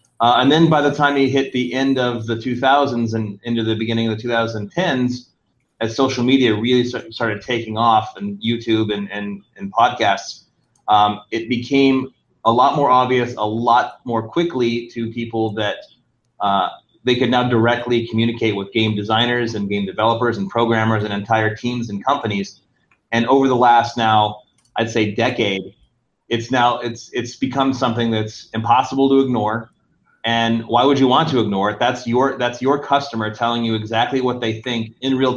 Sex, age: male, 30-49